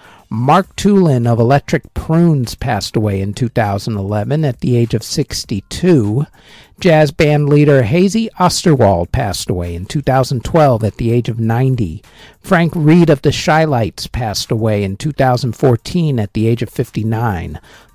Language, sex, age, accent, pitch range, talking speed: English, male, 50-69, American, 115-160 Hz, 140 wpm